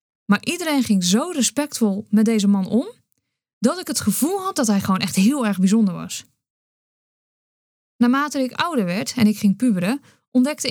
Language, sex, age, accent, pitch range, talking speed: Dutch, female, 20-39, Dutch, 195-260 Hz, 175 wpm